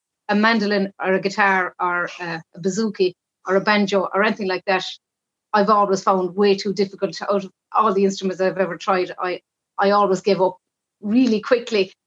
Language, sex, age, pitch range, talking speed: English, female, 30-49, 195-240 Hz, 185 wpm